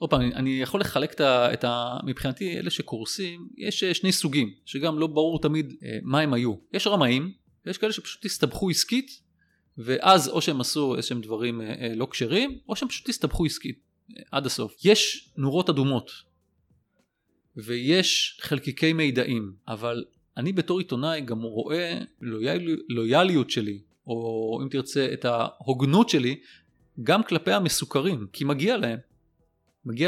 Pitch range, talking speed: 125-180 Hz, 120 wpm